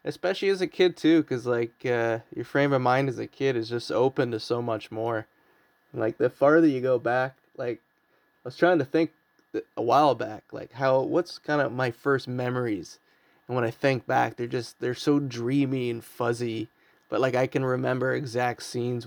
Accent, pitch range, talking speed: American, 115-135 Hz, 200 wpm